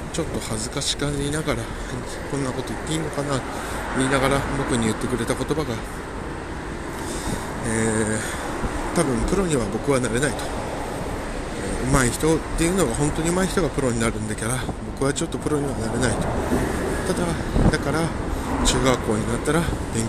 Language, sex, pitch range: Japanese, male, 105-130 Hz